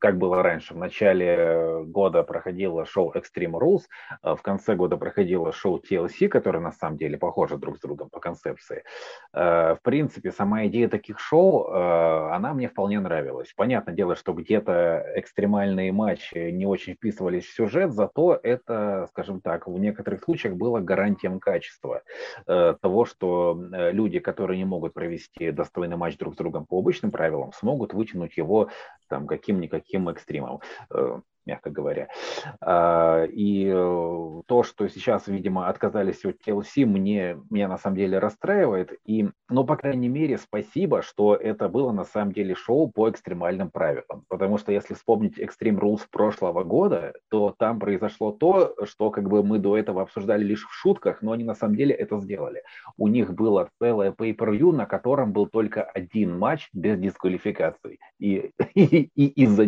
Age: 30-49